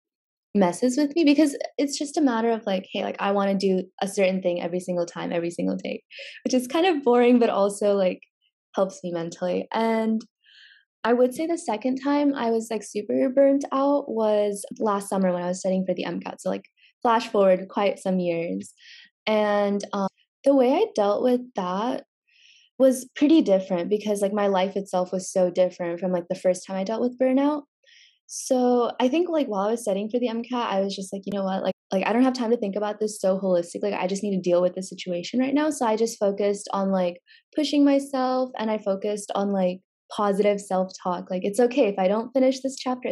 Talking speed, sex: 225 wpm, female